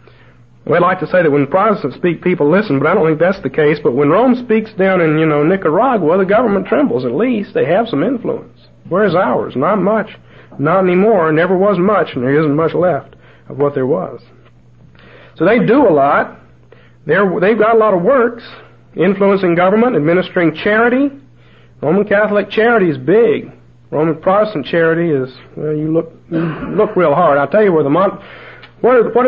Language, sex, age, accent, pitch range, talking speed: English, male, 50-69, American, 120-190 Hz, 185 wpm